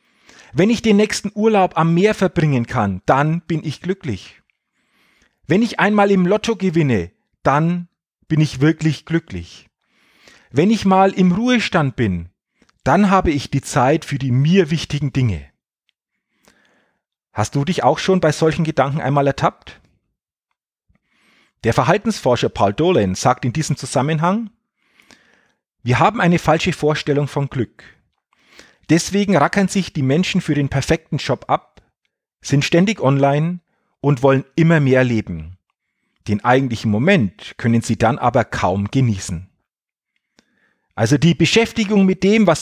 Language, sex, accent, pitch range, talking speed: German, male, German, 130-185 Hz, 140 wpm